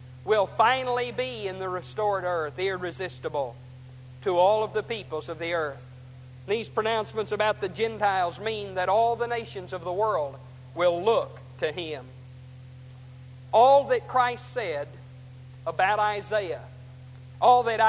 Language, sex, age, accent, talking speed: English, male, 50-69, American, 140 wpm